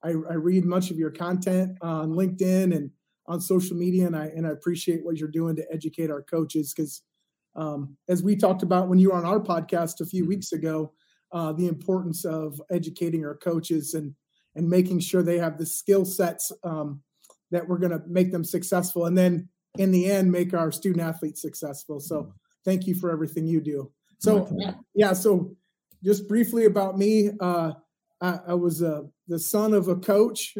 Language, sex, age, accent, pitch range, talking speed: English, male, 30-49, American, 165-190 Hz, 195 wpm